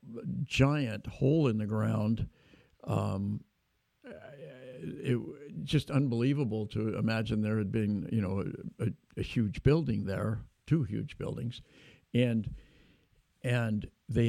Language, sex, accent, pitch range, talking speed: English, male, American, 110-140 Hz, 120 wpm